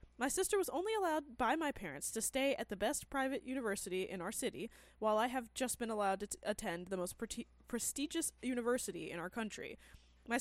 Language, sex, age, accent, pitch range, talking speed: English, female, 20-39, American, 200-280 Hz, 195 wpm